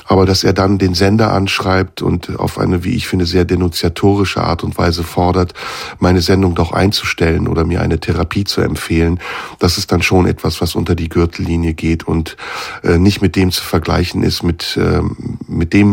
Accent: German